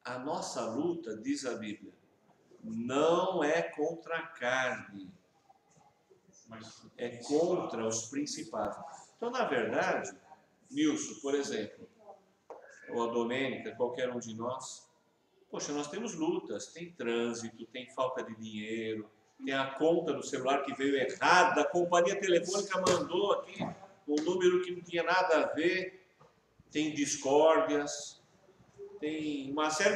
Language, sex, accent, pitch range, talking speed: Portuguese, male, Brazilian, 130-185 Hz, 130 wpm